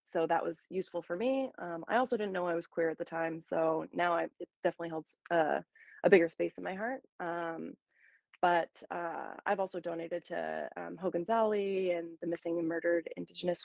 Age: 20-39